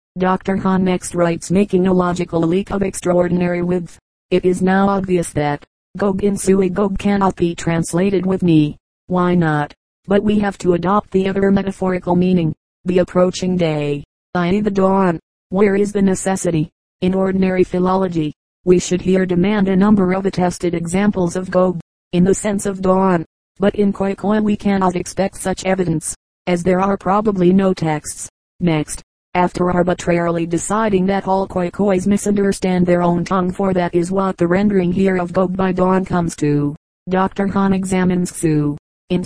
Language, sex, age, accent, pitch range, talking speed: English, female, 40-59, American, 175-190 Hz, 170 wpm